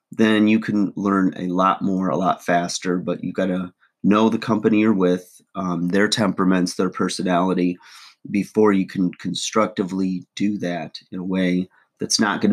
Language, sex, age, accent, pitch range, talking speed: English, male, 30-49, American, 90-105 Hz, 170 wpm